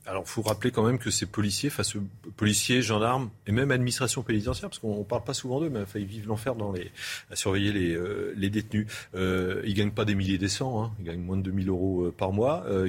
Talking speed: 260 wpm